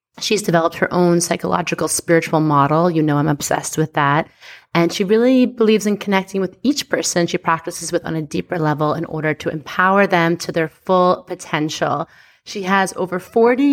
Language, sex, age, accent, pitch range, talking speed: English, female, 30-49, American, 165-210 Hz, 185 wpm